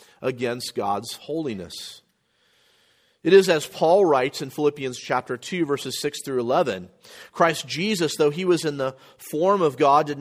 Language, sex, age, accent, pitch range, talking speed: English, male, 40-59, American, 115-145 Hz, 160 wpm